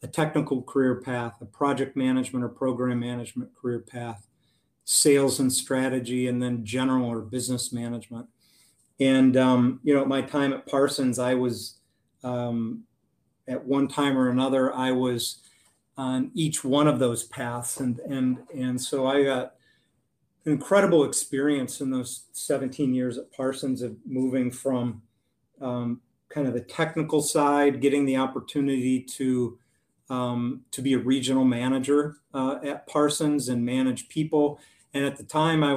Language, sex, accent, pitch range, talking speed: English, male, American, 125-140 Hz, 150 wpm